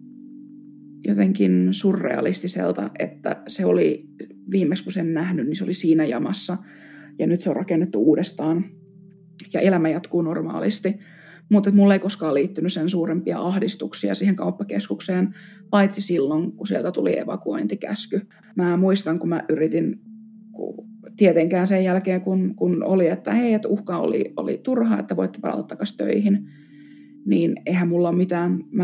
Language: Finnish